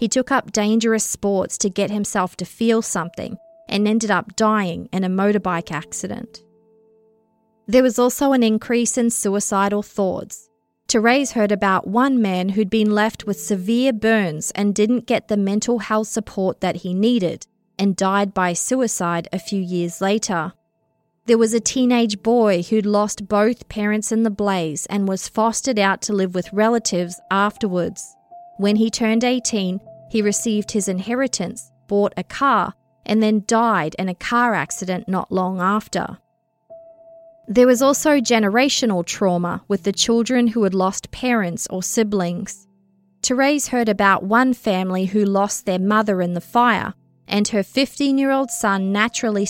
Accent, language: Australian, English